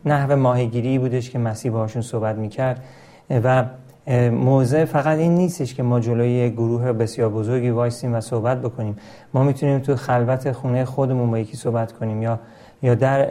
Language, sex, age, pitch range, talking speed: Persian, male, 40-59, 120-135 Hz, 160 wpm